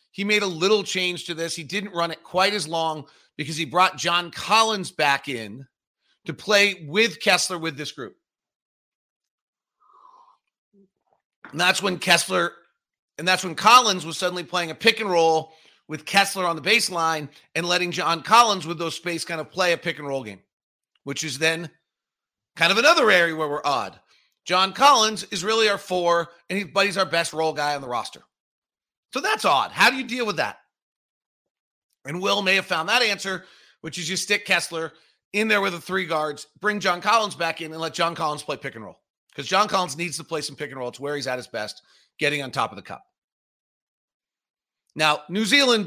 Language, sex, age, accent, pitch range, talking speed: English, male, 40-59, American, 155-195 Hz, 200 wpm